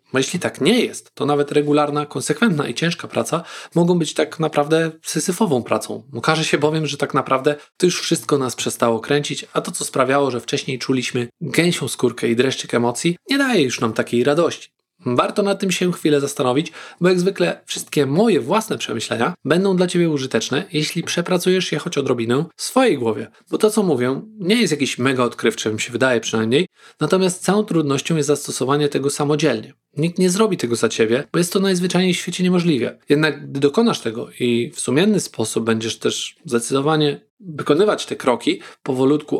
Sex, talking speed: male, 185 wpm